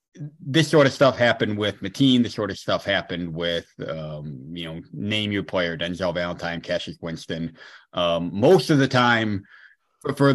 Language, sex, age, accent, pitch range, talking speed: English, male, 30-49, American, 85-120 Hz, 170 wpm